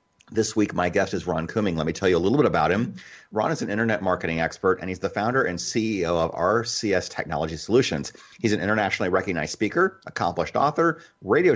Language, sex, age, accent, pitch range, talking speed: English, male, 30-49, American, 90-115 Hz, 210 wpm